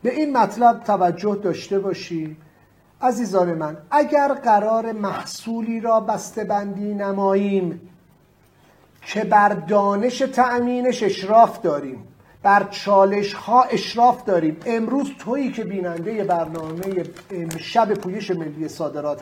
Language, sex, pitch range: English, male, 195-245 Hz